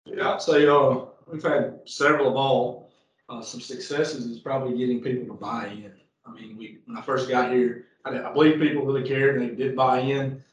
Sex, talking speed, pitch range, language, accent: male, 210 wpm, 115-135 Hz, English, American